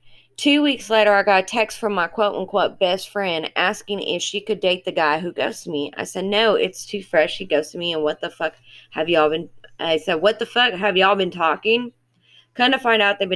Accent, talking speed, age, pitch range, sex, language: American, 240 wpm, 20-39, 155-205 Hz, female, English